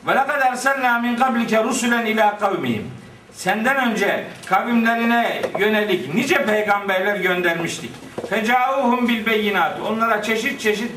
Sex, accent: male, native